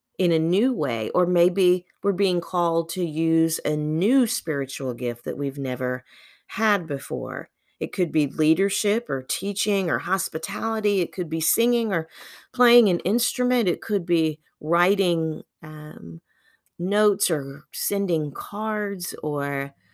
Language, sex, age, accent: English, female, 40-59, American